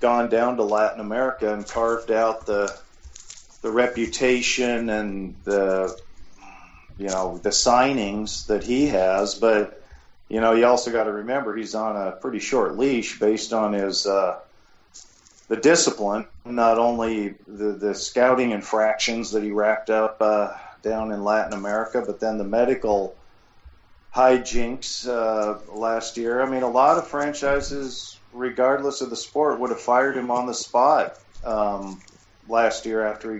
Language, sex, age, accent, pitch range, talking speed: English, male, 50-69, American, 105-120 Hz, 155 wpm